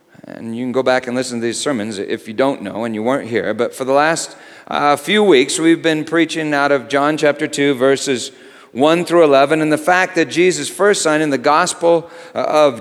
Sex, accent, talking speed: male, American, 225 wpm